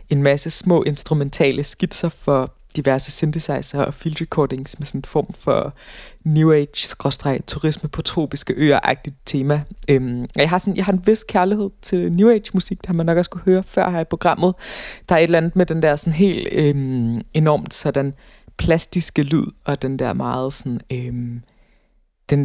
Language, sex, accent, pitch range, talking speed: Danish, female, native, 135-170 Hz, 180 wpm